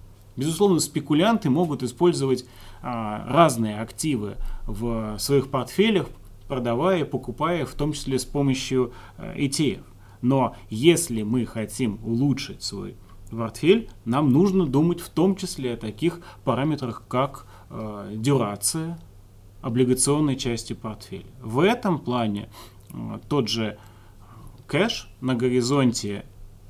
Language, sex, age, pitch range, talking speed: Russian, male, 30-49, 105-145 Hz, 105 wpm